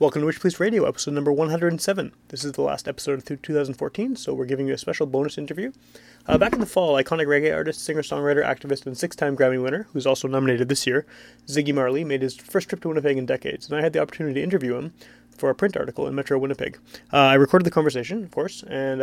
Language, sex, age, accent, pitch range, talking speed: English, male, 30-49, American, 135-155 Hz, 235 wpm